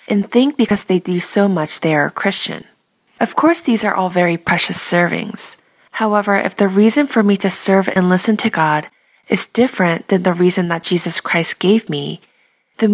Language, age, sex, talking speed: English, 20-39, female, 195 wpm